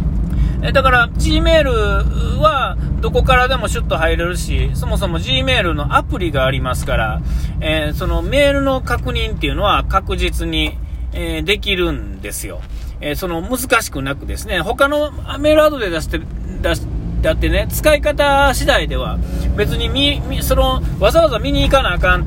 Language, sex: Japanese, male